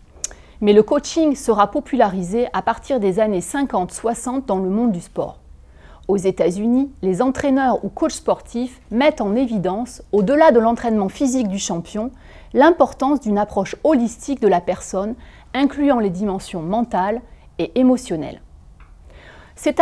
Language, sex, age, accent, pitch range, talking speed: French, female, 30-49, French, 185-270 Hz, 140 wpm